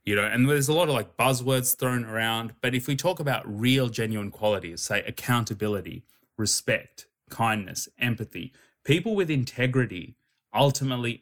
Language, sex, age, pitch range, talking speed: English, male, 20-39, 105-130 Hz, 150 wpm